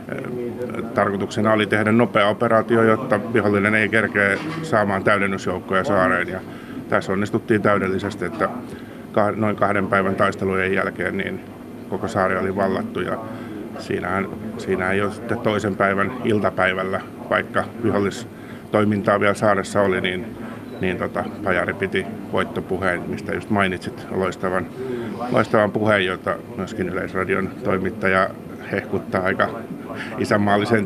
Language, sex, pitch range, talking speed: Finnish, male, 95-110 Hz, 115 wpm